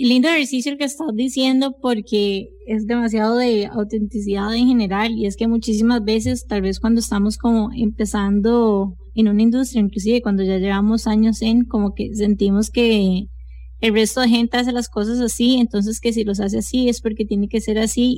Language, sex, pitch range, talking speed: English, female, 205-240 Hz, 185 wpm